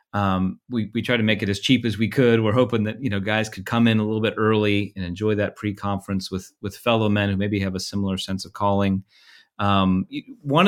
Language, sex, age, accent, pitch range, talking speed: English, male, 30-49, American, 100-125 Hz, 245 wpm